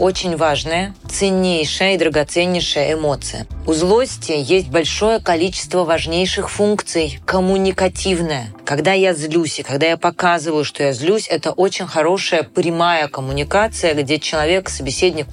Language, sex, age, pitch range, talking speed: Russian, female, 30-49, 145-185 Hz, 125 wpm